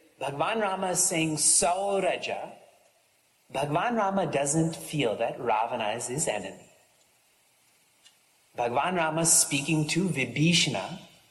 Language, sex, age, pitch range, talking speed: English, male, 30-49, 150-225 Hz, 105 wpm